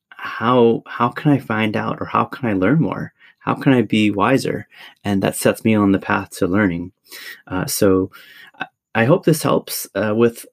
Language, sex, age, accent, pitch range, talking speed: English, male, 30-49, American, 95-120 Hz, 195 wpm